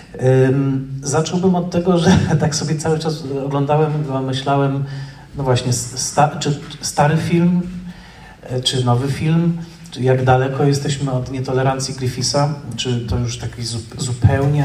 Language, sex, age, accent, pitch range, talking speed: Polish, male, 40-59, native, 125-145 Hz, 140 wpm